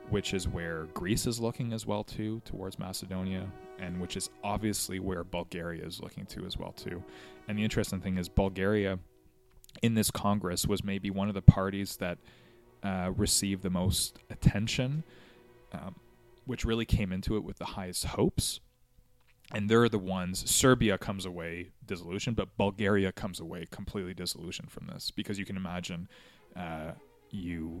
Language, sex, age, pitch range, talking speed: English, male, 20-39, 90-110 Hz, 165 wpm